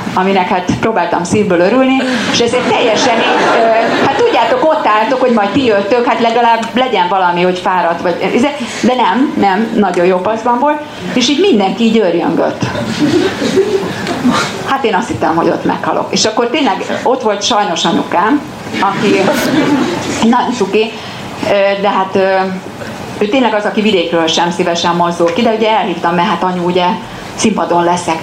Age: 30-49